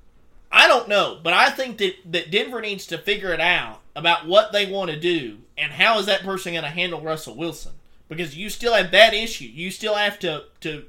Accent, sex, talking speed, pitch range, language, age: American, male, 225 wpm, 145-190 Hz, English, 20-39